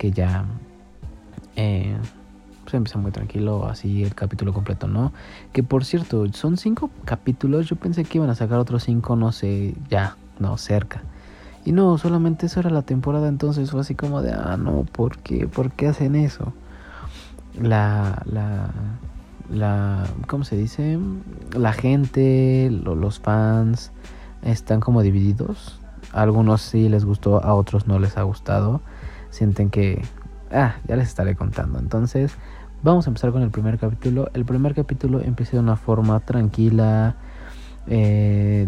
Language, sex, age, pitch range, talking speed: Spanish, male, 30-49, 100-125 Hz, 155 wpm